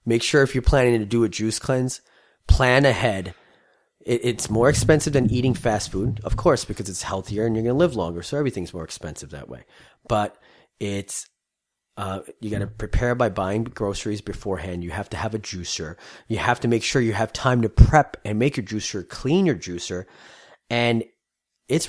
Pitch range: 95-125 Hz